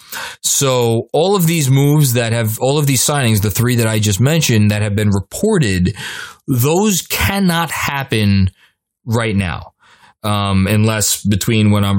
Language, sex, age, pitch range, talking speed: English, male, 20-39, 105-145 Hz, 155 wpm